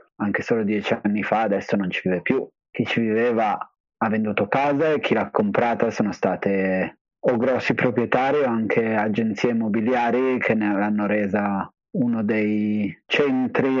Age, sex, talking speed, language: 30-49, male, 155 wpm, Italian